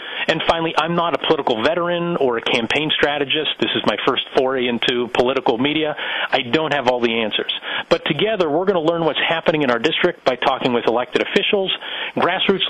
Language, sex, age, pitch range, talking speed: English, male, 40-59, 130-170 Hz, 200 wpm